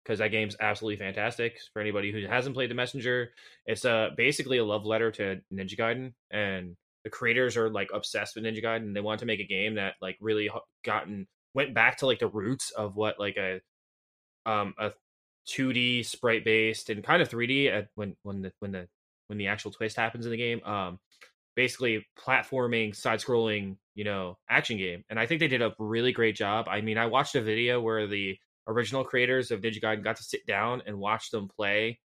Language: English